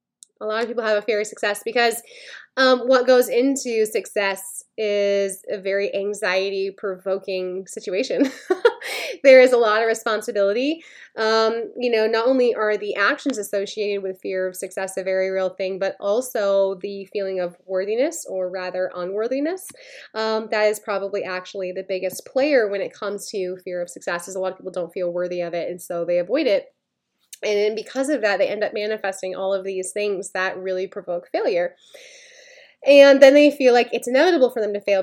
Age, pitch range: 20-39, 190-245 Hz